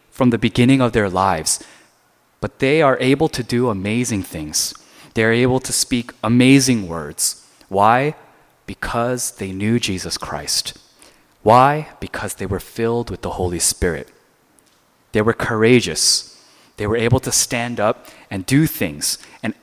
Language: Korean